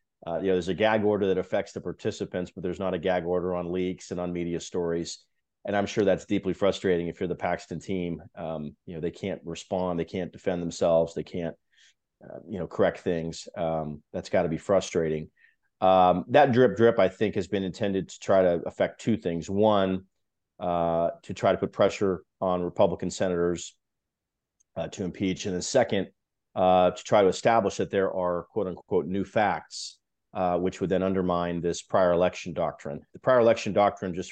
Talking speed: 200 wpm